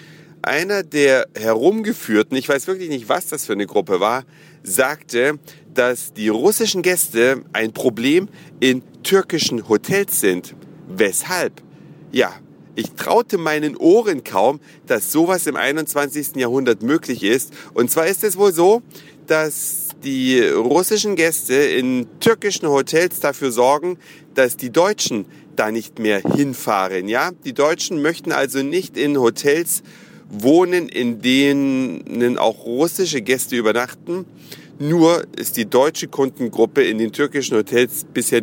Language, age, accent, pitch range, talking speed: German, 40-59, German, 125-165 Hz, 135 wpm